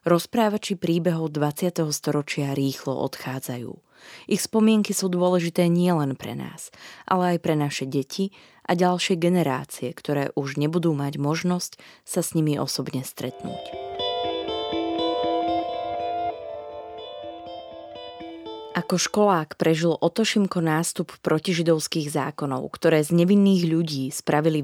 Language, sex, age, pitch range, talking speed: Slovak, female, 20-39, 145-185 Hz, 105 wpm